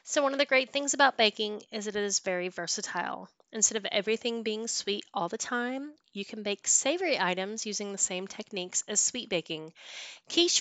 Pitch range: 185-235 Hz